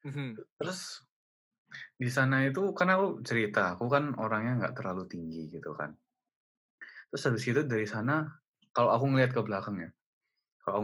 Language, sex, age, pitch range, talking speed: Indonesian, male, 20-39, 105-130 Hz, 150 wpm